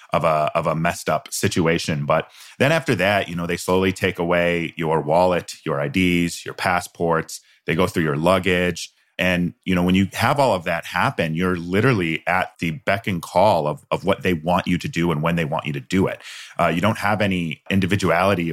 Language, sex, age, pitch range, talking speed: English, male, 30-49, 85-100 Hz, 215 wpm